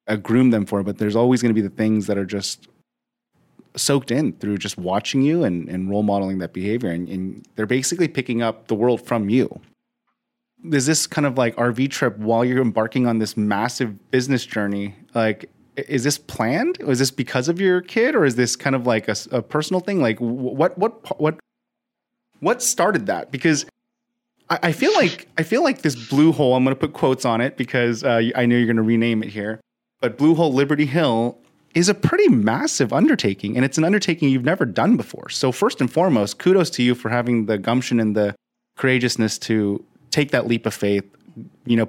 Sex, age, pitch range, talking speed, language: male, 30-49, 110-145 Hz, 210 wpm, English